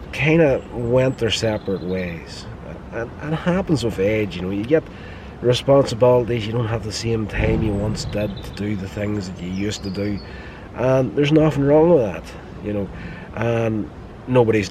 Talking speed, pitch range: 190 wpm, 95-110 Hz